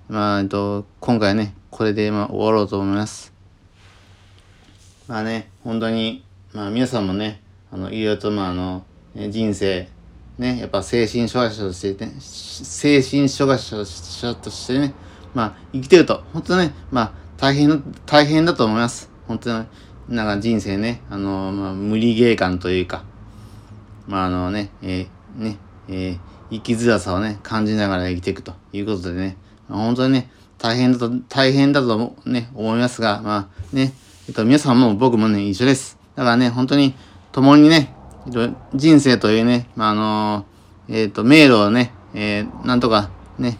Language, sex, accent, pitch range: Japanese, male, native, 100-125 Hz